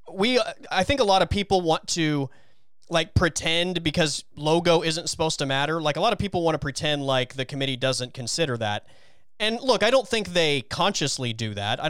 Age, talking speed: 30-49, 205 wpm